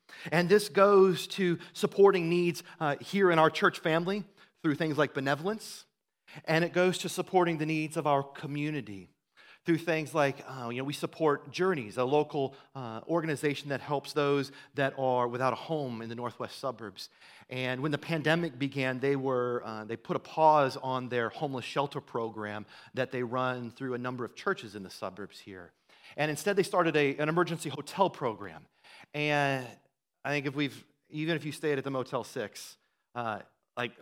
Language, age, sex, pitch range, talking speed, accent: English, 30-49, male, 125-160 Hz, 185 wpm, American